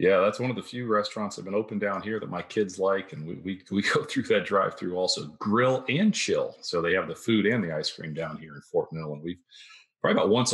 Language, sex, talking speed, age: English, male, 280 wpm, 40-59